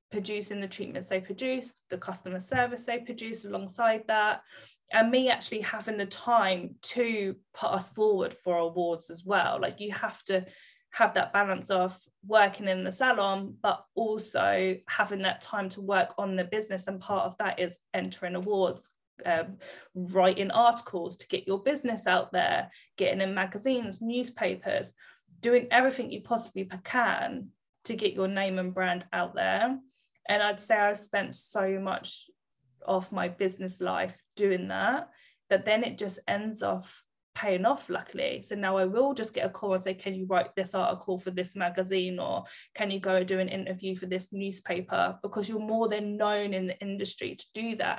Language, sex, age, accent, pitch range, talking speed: English, female, 20-39, British, 185-220 Hz, 180 wpm